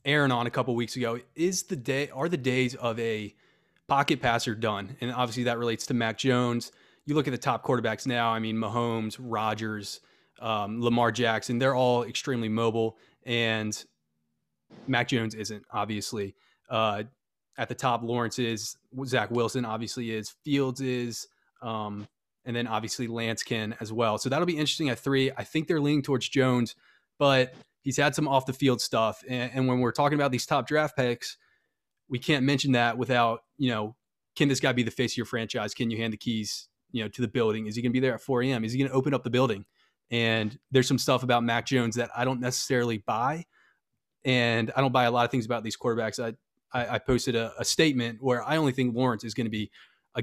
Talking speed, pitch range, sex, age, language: 215 wpm, 110-130 Hz, male, 20-39, English